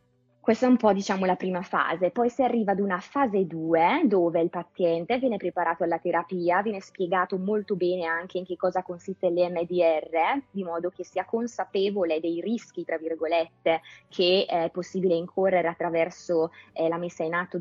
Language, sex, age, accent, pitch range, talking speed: Italian, female, 20-39, native, 170-195 Hz, 175 wpm